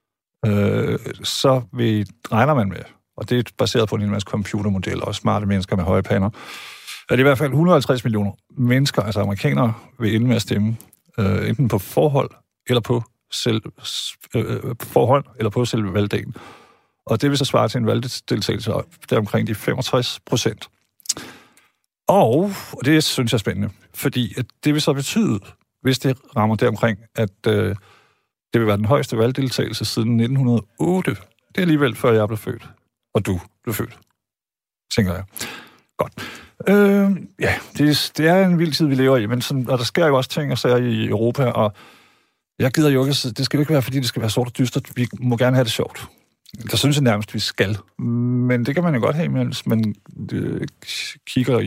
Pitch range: 110-135 Hz